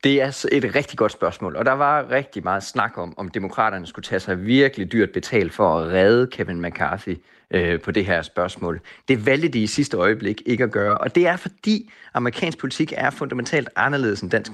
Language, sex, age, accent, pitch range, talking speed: Danish, male, 30-49, native, 105-145 Hz, 210 wpm